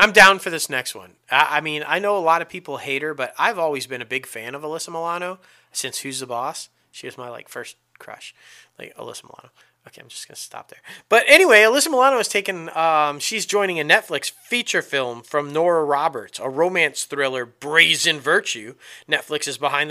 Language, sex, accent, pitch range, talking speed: English, male, American, 135-190 Hz, 215 wpm